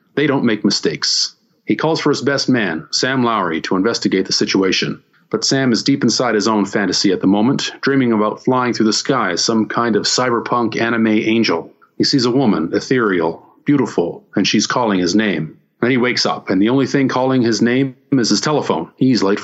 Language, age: English, 40-59